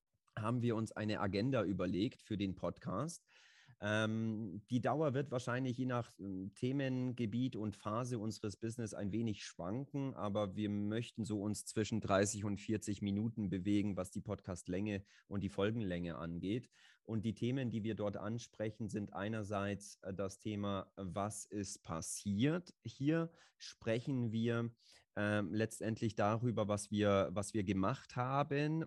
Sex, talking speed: male, 140 wpm